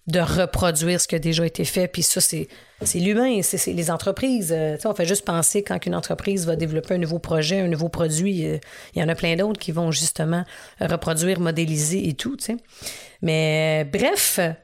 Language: French